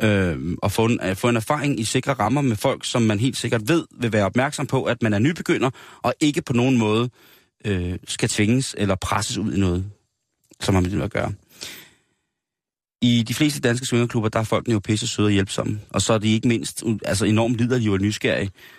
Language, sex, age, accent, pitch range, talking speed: Danish, male, 30-49, native, 105-130 Hz, 210 wpm